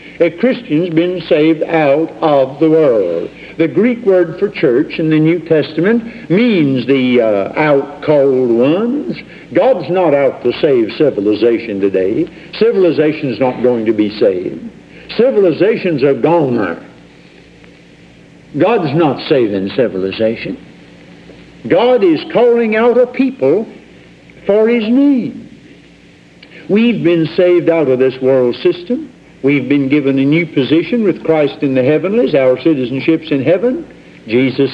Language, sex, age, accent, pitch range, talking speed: English, male, 60-79, American, 130-180 Hz, 130 wpm